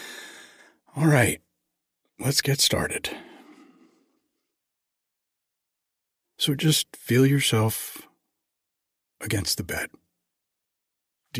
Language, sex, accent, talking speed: English, male, American, 70 wpm